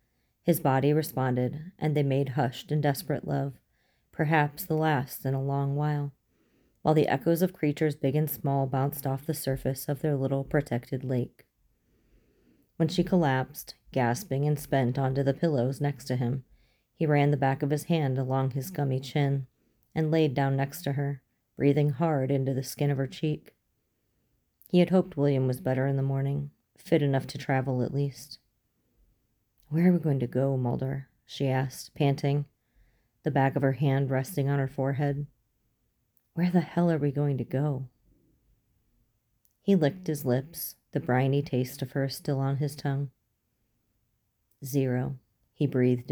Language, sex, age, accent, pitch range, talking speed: English, female, 30-49, American, 130-150 Hz, 170 wpm